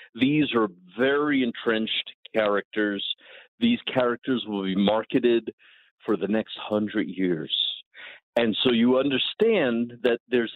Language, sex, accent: English, male, American